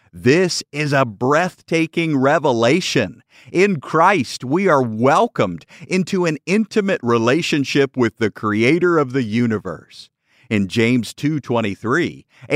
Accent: American